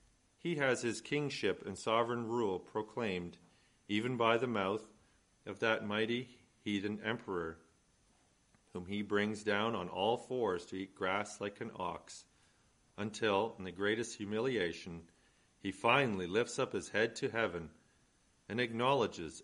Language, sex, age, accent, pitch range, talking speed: English, male, 40-59, American, 90-115 Hz, 140 wpm